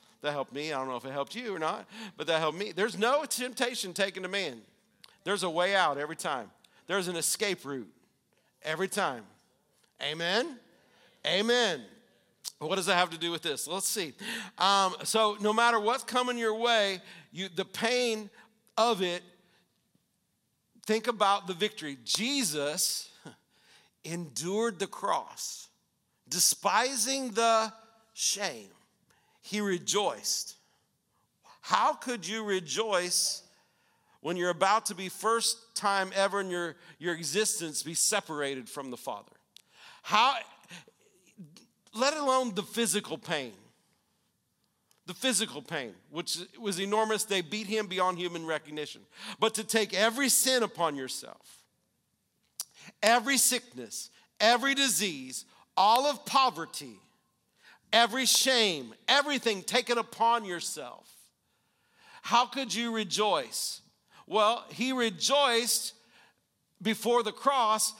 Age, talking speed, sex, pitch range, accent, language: 50-69, 125 wpm, male, 180-230 Hz, American, English